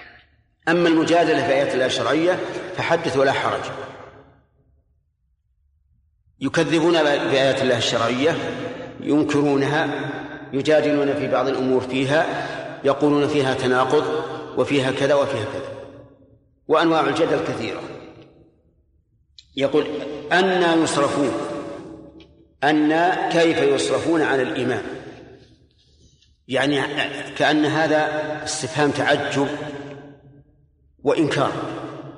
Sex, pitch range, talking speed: male, 130-150 Hz, 80 wpm